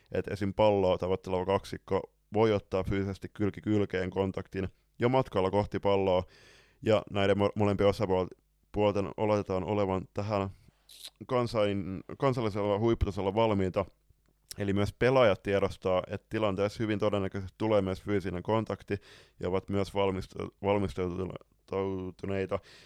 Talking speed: 115 wpm